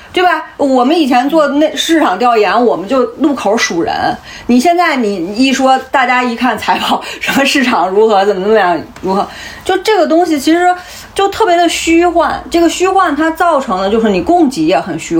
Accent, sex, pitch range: native, female, 220-335 Hz